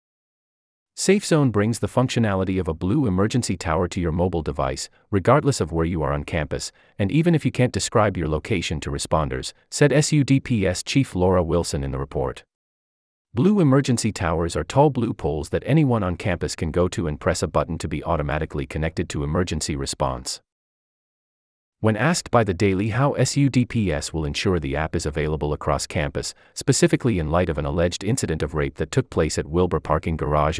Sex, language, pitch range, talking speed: male, English, 75-110 Hz, 185 wpm